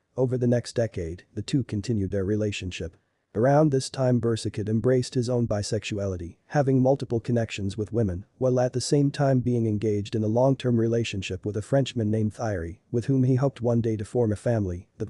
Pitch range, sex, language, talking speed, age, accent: 105-125 Hz, male, English, 195 wpm, 40-59, American